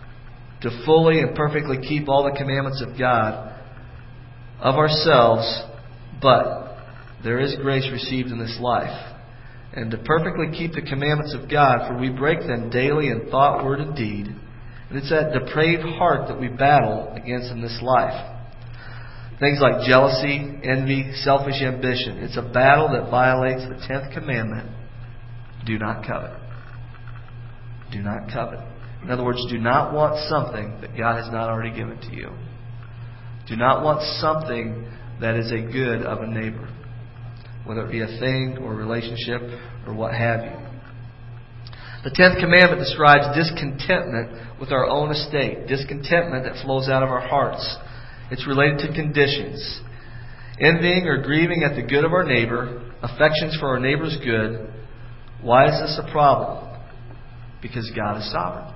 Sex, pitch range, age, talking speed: male, 115-140 Hz, 40-59, 155 wpm